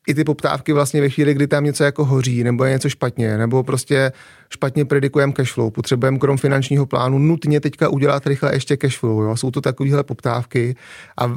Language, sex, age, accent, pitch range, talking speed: Czech, male, 30-49, native, 125-140 Hz, 200 wpm